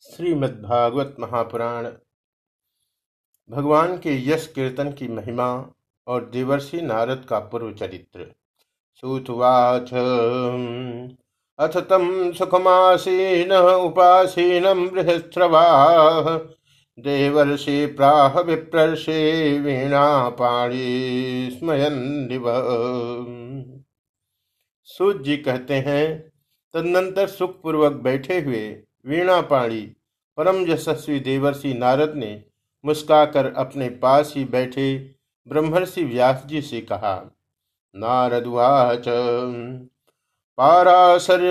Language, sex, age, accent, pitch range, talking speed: Hindi, male, 50-69, native, 125-160 Hz, 70 wpm